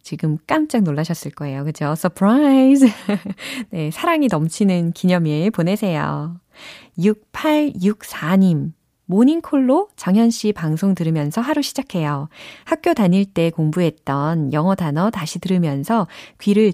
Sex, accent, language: female, native, Korean